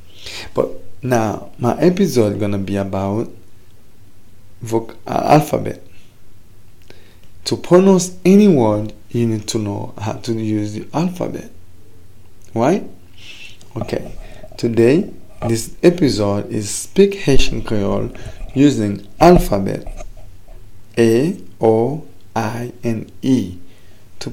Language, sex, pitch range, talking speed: English, male, 100-125 Hz, 105 wpm